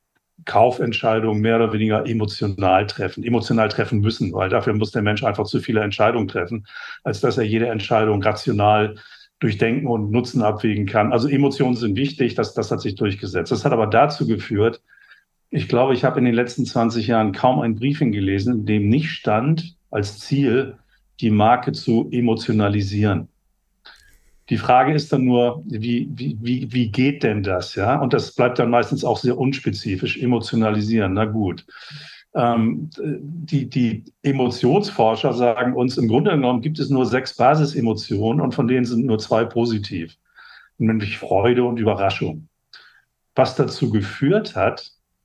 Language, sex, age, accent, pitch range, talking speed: German, male, 50-69, German, 105-130 Hz, 160 wpm